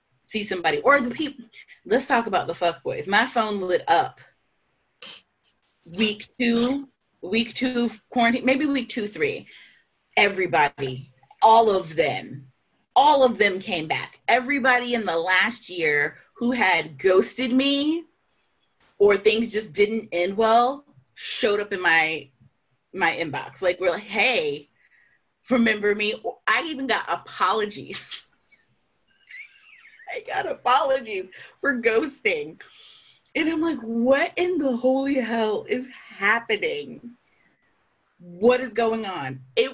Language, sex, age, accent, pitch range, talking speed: English, female, 30-49, American, 185-260 Hz, 130 wpm